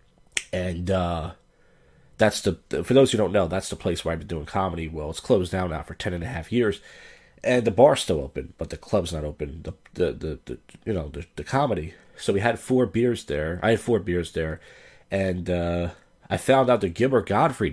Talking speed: 225 wpm